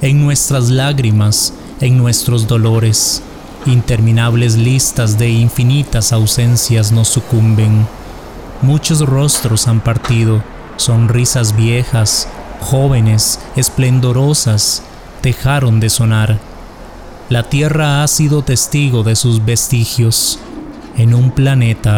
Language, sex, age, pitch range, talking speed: English, male, 30-49, 110-130 Hz, 95 wpm